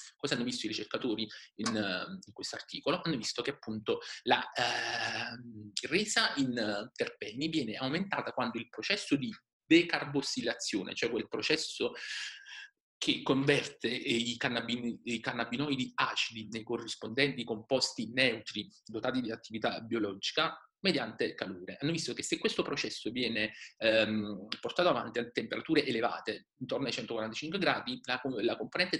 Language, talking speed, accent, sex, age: Italian, 130 wpm, native, male, 30-49